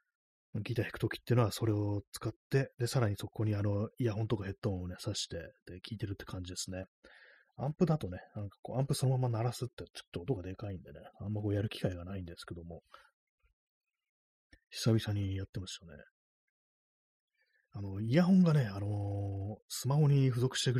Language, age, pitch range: Japanese, 30-49, 95-125 Hz